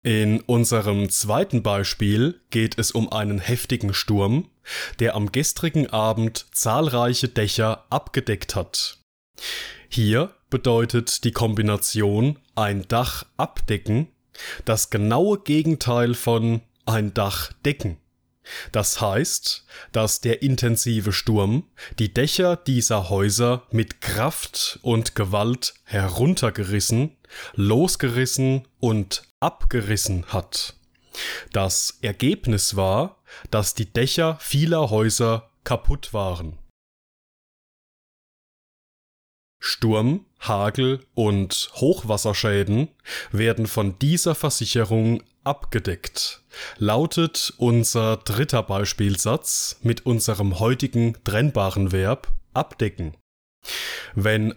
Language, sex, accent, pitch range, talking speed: German, male, German, 105-130 Hz, 90 wpm